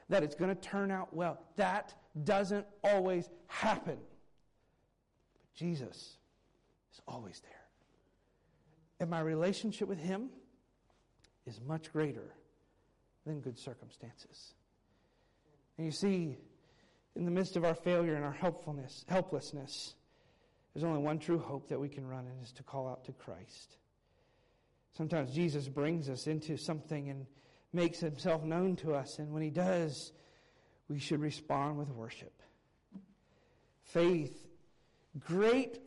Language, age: English, 50-69